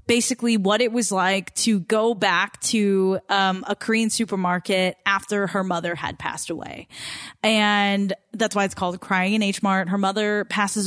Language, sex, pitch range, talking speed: English, female, 195-230 Hz, 170 wpm